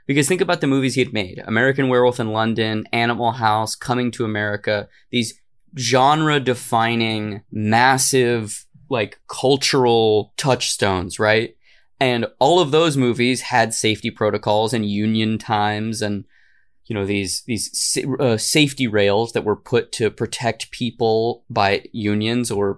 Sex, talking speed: male, 135 wpm